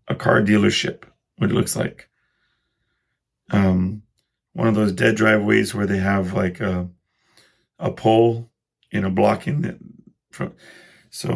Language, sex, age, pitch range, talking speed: English, male, 40-59, 100-115 Hz, 130 wpm